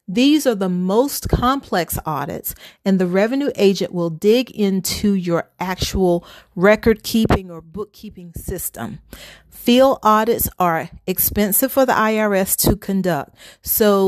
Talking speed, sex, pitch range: 130 wpm, female, 180-225 Hz